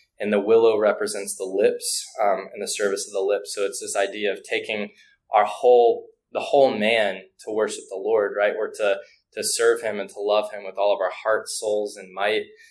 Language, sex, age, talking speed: English, male, 20-39, 215 wpm